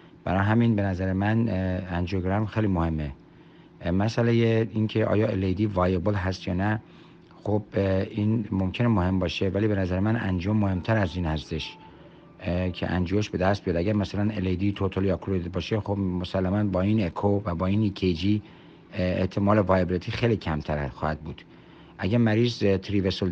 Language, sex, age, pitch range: Persian, male, 50-69, 90-110 Hz